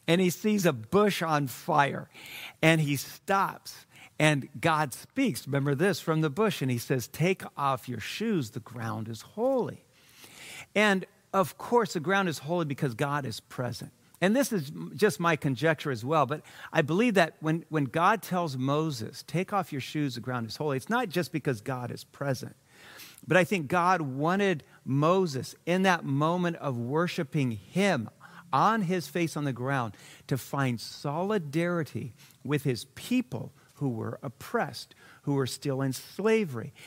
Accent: American